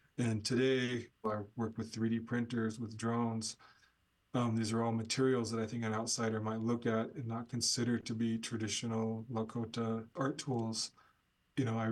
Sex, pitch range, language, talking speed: male, 110-120 Hz, English, 170 wpm